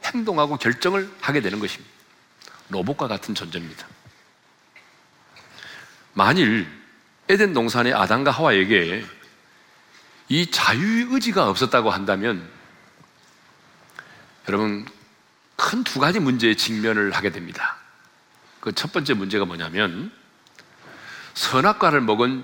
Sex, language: male, Korean